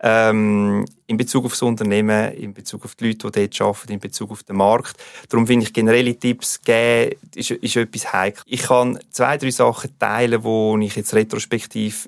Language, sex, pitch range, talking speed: German, male, 105-120 Hz, 195 wpm